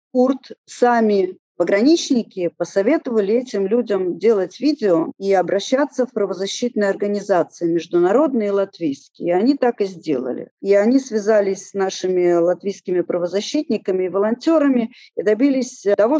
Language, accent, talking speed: Russian, native, 115 wpm